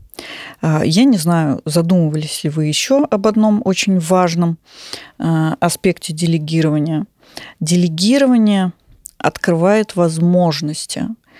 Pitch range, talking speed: 160-210 Hz, 85 wpm